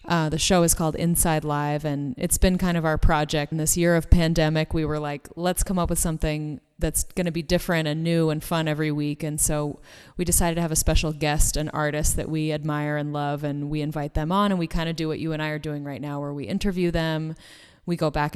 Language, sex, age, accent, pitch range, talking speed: English, female, 20-39, American, 150-175 Hz, 260 wpm